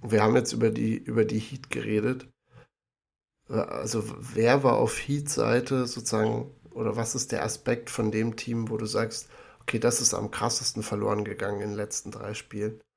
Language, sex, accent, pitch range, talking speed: German, male, German, 110-125 Hz, 175 wpm